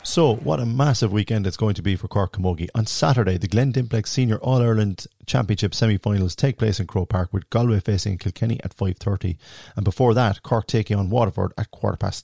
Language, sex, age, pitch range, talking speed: English, male, 30-49, 95-120 Hz, 205 wpm